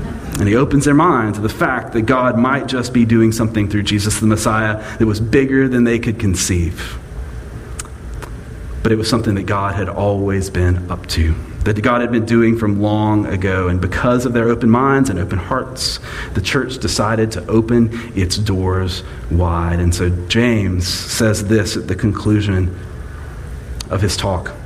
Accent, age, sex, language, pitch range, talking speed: American, 40-59, male, English, 90-115 Hz, 180 wpm